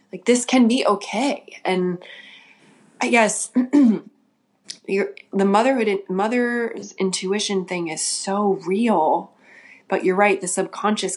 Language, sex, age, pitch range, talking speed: English, female, 20-39, 170-215 Hz, 115 wpm